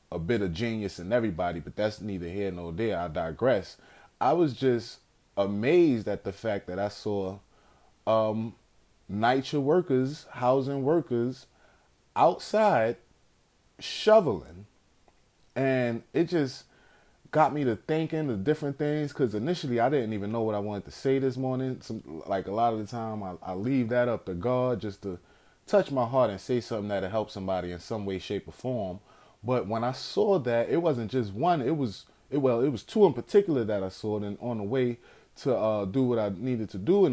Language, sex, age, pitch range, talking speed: English, male, 20-39, 105-140 Hz, 190 wpm